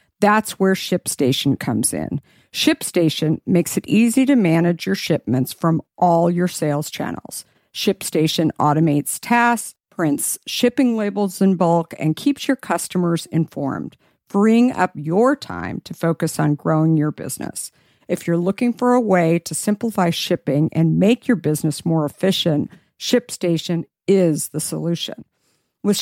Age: 50-69